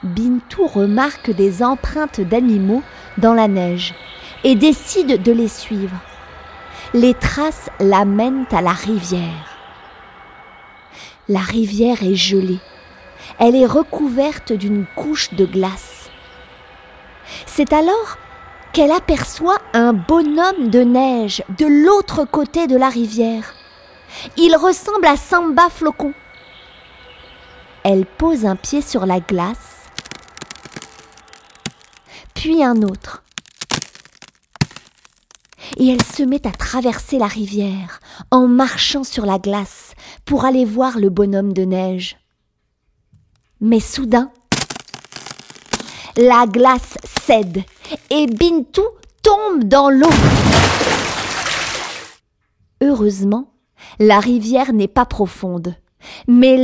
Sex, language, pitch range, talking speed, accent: female, French, 205-290 Hz, 100 wpm, French